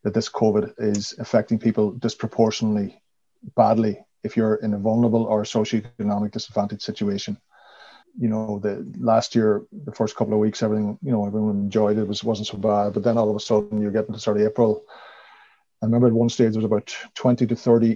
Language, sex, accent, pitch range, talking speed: English, male, Irish, 110-120 Hz, 205 wpm